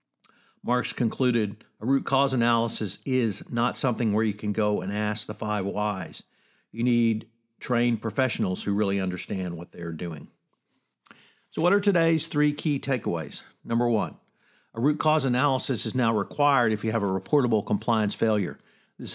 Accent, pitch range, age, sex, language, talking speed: American, 105-130 Hz, 50-69, male, English, 165 wpm